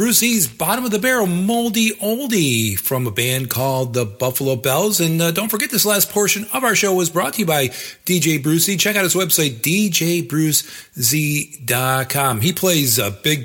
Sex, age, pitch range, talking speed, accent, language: male, 40-59, 125-170 Hz, 180 wpm, American, English